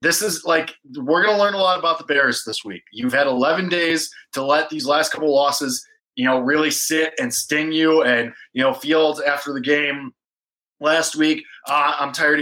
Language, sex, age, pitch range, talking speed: English, male, 20-39, 120-160 Hz, 210 wpm